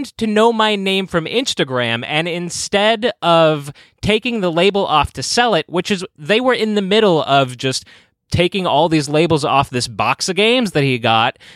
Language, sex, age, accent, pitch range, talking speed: English, male, 20-39, American, 115-170 Hz, 190 wpm